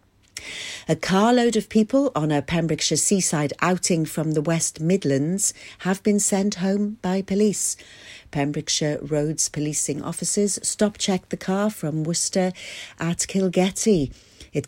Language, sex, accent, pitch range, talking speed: English, female, British, 130-180 Hz, 125 wpm